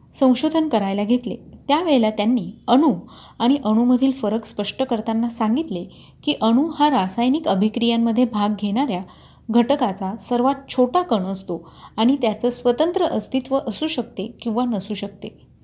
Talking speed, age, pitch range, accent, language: 125 wpm, 30-49, 215-270 Hz, native, Marathi